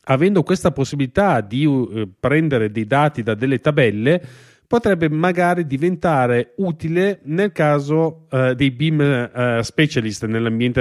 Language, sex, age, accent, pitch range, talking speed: Italian, male, 30-49, native, 120-165 Hz, 130 wpm